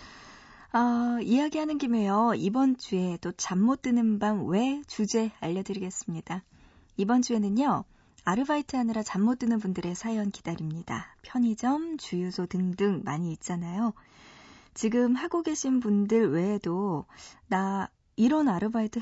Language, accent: Korean, native